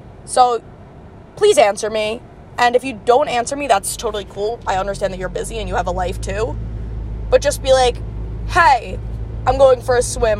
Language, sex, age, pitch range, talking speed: English, female, 20-39, 190-240 Hz, 195 wpm